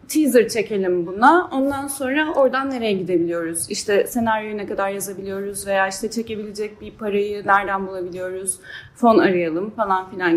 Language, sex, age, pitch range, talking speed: Turkish, female, 10-29, 195-290 Hz, 140 wpm